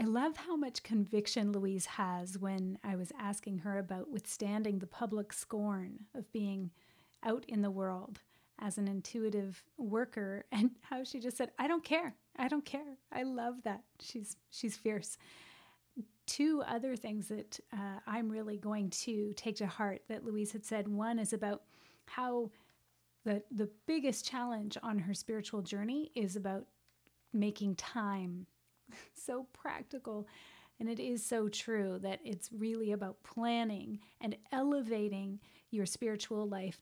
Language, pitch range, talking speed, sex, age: English, 200-235 Hz, 150 wpm, female, 30-49